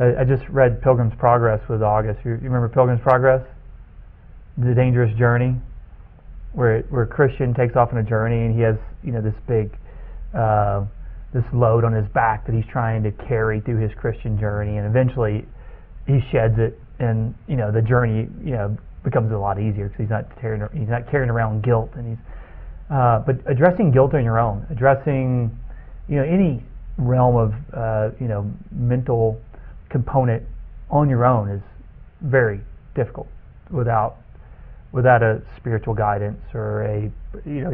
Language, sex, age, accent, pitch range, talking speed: English, male, 30-49, American, 110-125 Hz, 165 wpm